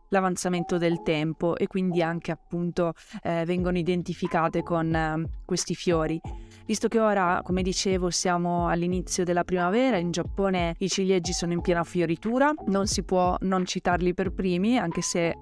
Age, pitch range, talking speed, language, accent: 20-39, 170-190 Hz, 155 wpm, Italian, native